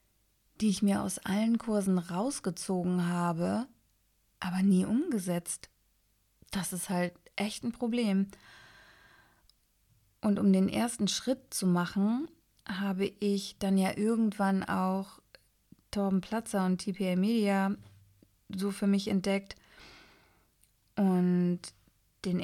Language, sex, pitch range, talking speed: German, female, 180-215 Hz, 110 wpm